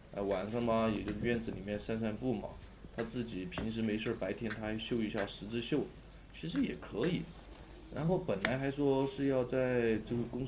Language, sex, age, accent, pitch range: Chinese, male, 20-39, native, 105-120 Hz